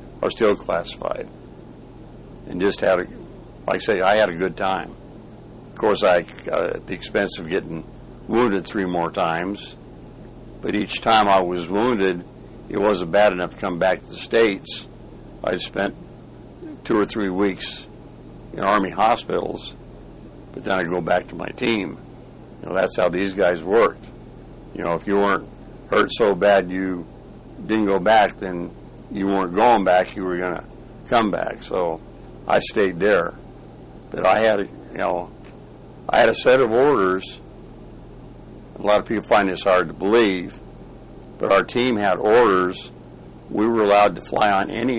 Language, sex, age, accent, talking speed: English, male, 60-79, American, 170 wpm